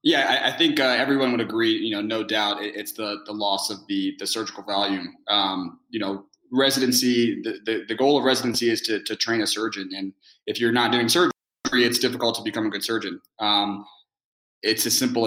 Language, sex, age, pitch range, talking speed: English, male, 20-39, 105-125 Hz, 215 wpm